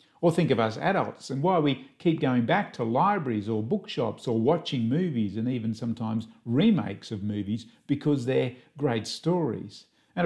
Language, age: English, 50-69